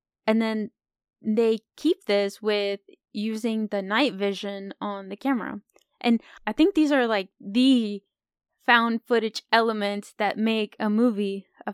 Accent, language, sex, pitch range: American, English, female, 205-245 Hz